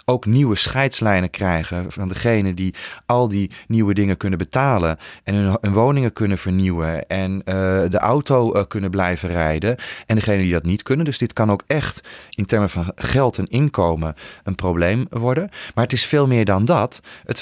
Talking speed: 185 wpm